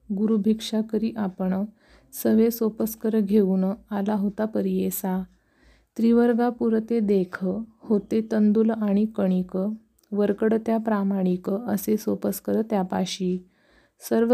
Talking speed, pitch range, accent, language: 95 wpm, 195-220 Hz, native, Marathi